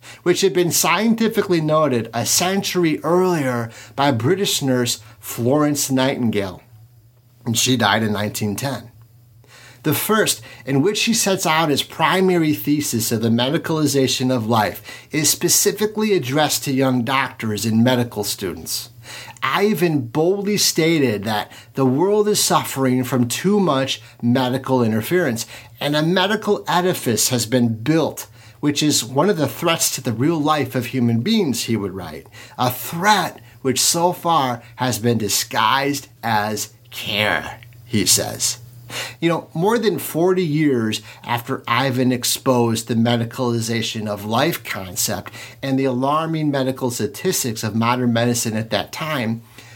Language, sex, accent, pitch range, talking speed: English, male, American, 115-160 Hz, 140 wpm